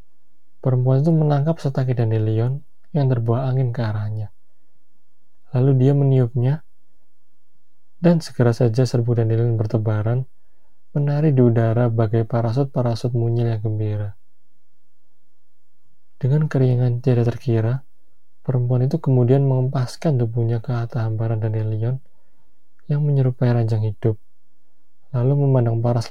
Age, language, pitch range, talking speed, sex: 20-39, Indonesian, 110-130 Hz, 110 wpm, male